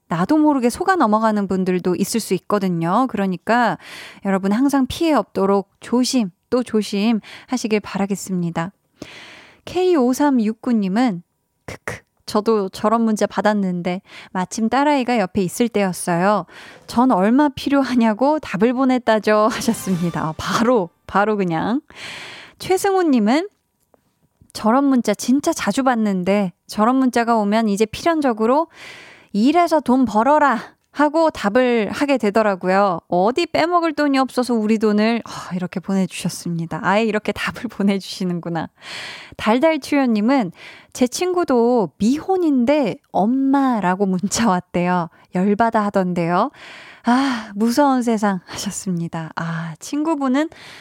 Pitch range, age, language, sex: 195-265 Hz, 20-39, Korean, female